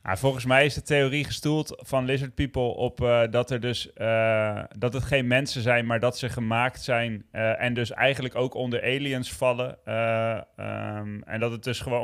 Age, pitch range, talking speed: 20-39, 115-135 Hz, 205 wpm